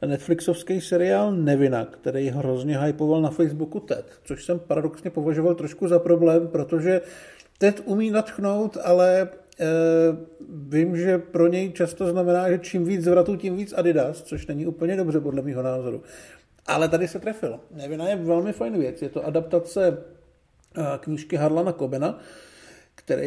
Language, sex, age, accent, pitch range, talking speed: Czech, male, 50-69, native, 150-175 Hz, 150 wpm